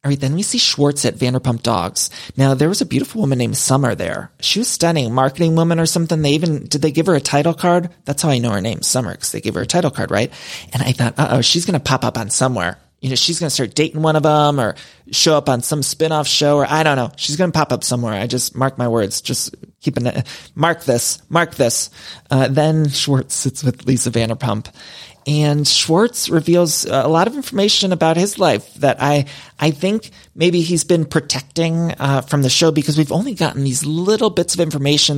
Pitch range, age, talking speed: 130-160 Hz, 30-49, 230 wpm